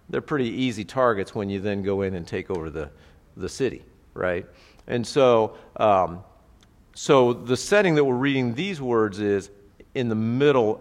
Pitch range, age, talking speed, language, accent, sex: 100-135 Hz, 50-69, 170 wpm, English, American, male